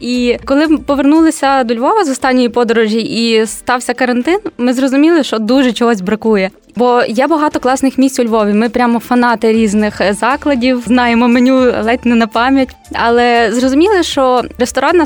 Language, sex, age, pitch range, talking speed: Ukrainian, female, 20-39, 230-270 Hz, 155 wpm